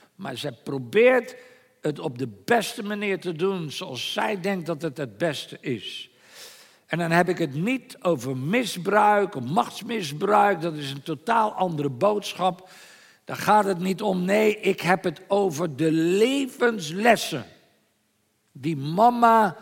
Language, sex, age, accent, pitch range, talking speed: Dutch, male, 50-69, Dutch, 175-245 Hz, 145 wpm